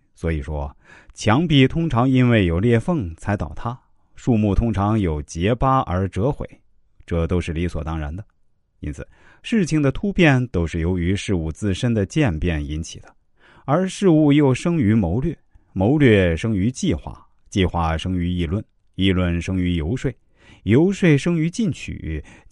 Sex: male